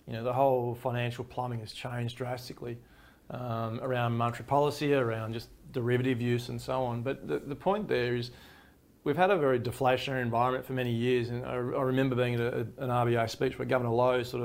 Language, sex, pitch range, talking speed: English, male, 120-135 Hz, 205 wpm